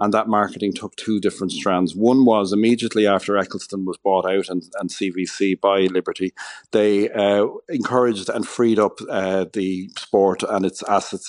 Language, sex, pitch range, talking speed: English, male, 95-115 Hz, 170 wpm